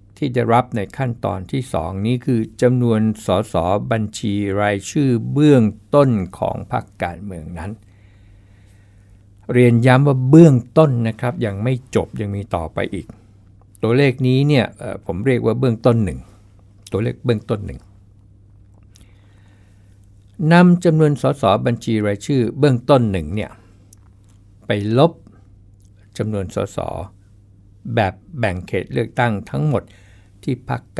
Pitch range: 100-120 Hz